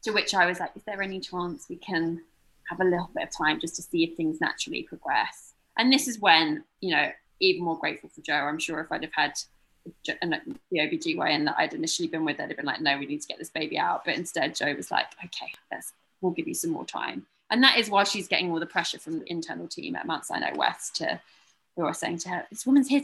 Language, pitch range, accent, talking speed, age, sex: English, 170-260 Hz, British, 265 wpm, 20-39, female